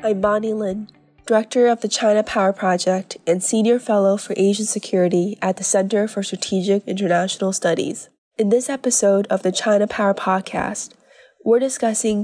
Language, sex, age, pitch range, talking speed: English, female, 20-39, 195-225 Hz, 155 wpm